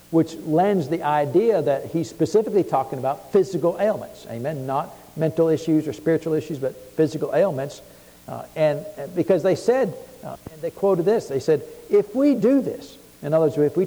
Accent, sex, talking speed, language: American, male, 185 wpm, English